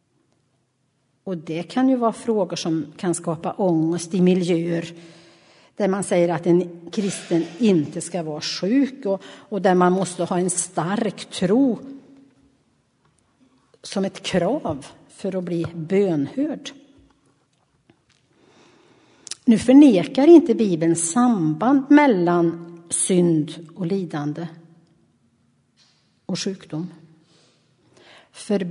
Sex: female